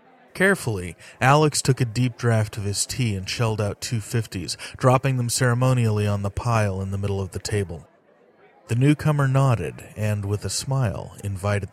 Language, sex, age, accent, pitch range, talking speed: English, male, 30-49, American, 105-130 Hz, 175 wpm